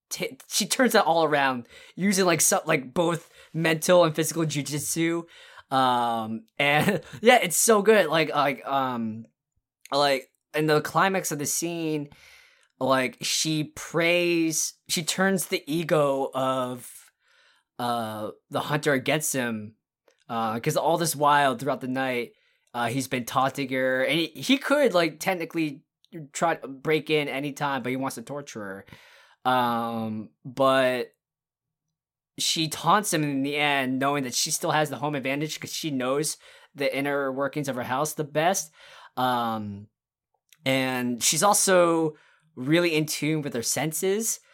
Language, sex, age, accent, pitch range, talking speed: English, male, 20-39, American, 130-165 Hz, 145 wpm